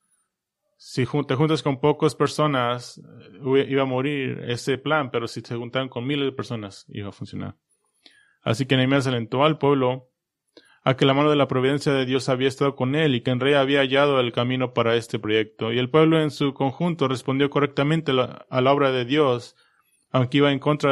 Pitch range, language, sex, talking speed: 115-140 Hz, English, male, 195 wpm